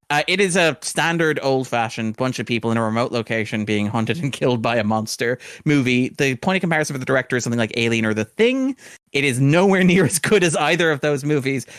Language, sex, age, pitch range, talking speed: English, male, 30-49, 120-155 Hz, 235 wpm